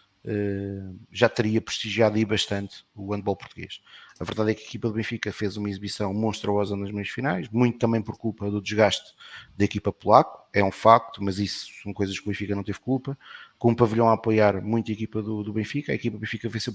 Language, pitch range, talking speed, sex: Portuguese, 100-115 Hz, 225 wpm, male